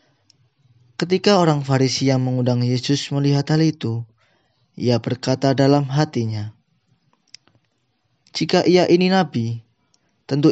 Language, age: Indonesian, 20-39